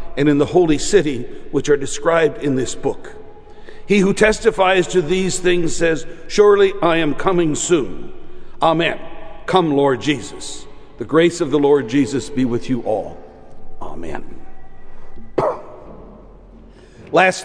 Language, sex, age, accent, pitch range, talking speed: Dutch, male, 60-79, American, 155-195 Hz, 135 wpm